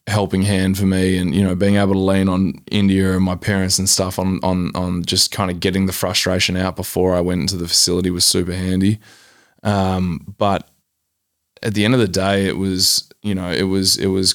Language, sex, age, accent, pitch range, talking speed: English, male, 20-39, Australian, 90-100 Hz, 220 wpm